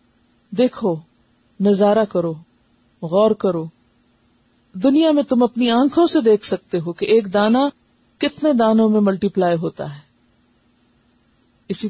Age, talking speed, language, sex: 50-69, 125 wpm, Urdu, female